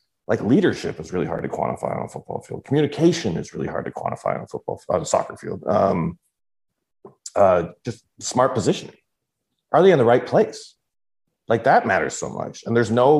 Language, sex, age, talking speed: English, male, 30-49, 195 wpm